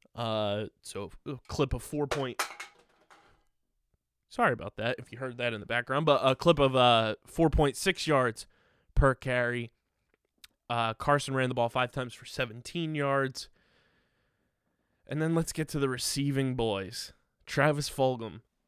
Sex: male